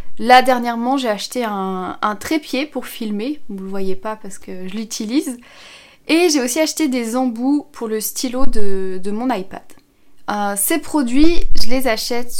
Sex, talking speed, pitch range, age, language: female, 180 wpm, 215-265 Hz, 20-39, French